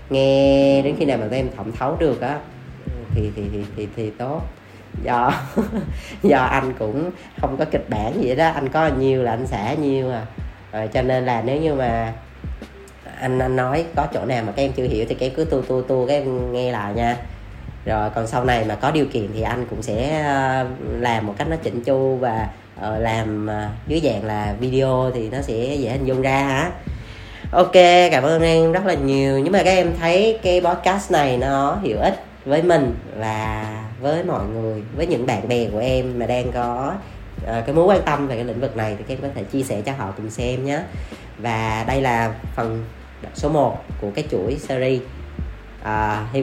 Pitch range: 110-140 Hz